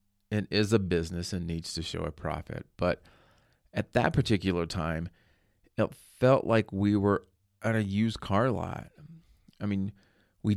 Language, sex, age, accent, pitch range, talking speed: English, male, 40-59, American, 90-110 Hz, 160 wpm